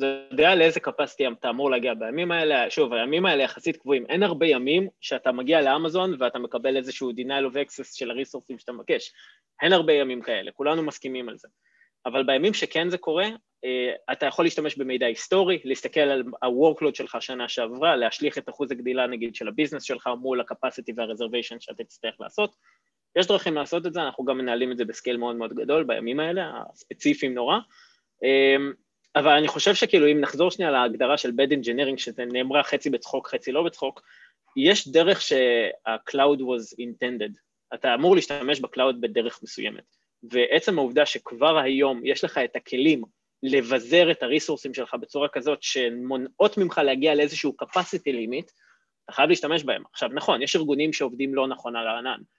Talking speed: 155 wpm